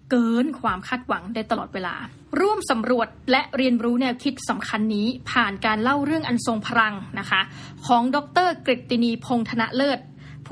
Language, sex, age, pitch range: Thai, female, 20-39, 225-265 Hz